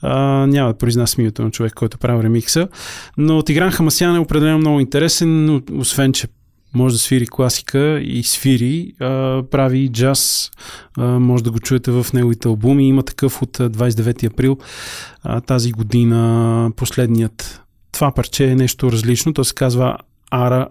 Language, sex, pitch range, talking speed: Bulgarian, male, 125-155 Hz, 155 wpm